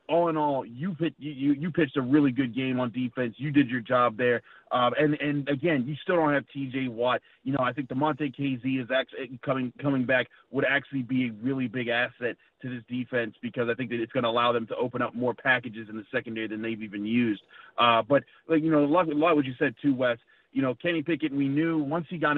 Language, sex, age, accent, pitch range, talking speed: English, male, 30-49, American, 120-140 Hz, 250 wpm